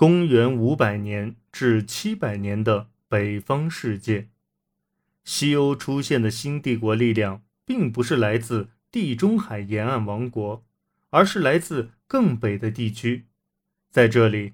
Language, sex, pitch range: Chinese, male, 110-155 Hz